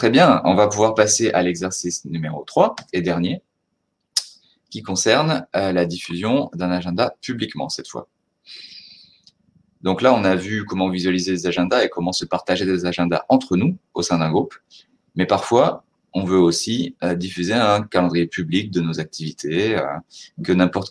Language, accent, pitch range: French, French, 85-95 Hz